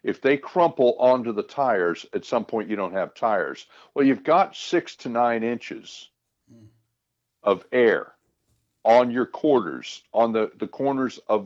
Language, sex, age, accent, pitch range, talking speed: English, male, 60-79, American, 110-140 Hz, 155 wpm